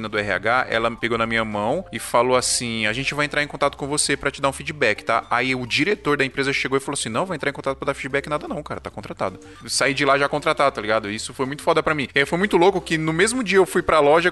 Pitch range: 120-155 Hz